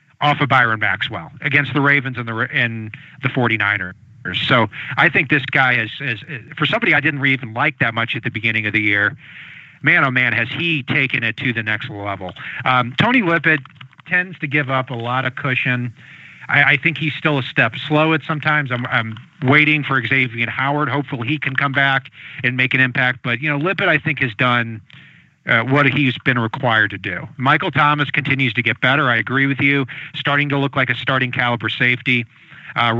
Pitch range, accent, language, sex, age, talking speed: 120-150 Hz, American, English, male, 40-59, 210 wpm